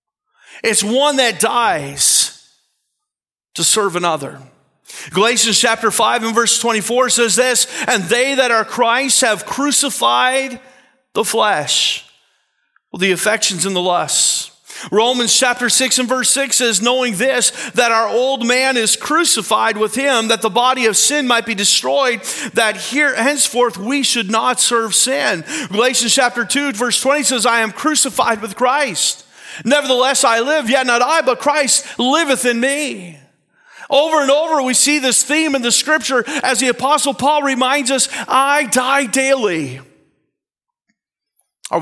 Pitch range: 205-270 Hz